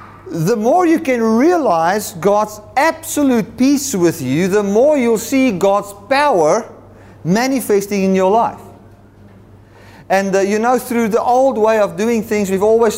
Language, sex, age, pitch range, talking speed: English, male, 40-59, 180-240 Hz, 155 wpm